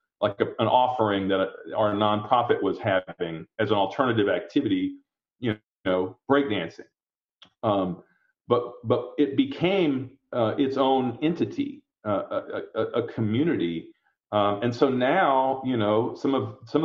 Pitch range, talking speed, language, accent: 110-155 Hz, 145 wpm, English, American